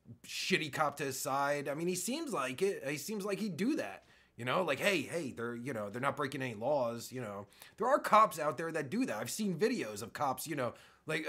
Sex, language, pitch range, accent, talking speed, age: male, English, 140-215 Hz, American, 255 wpm, 30-49